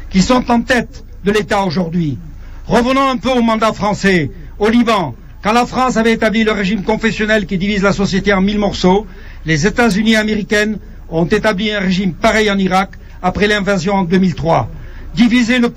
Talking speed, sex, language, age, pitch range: 170 wpm, male, French, 60-79, 190-225 Hz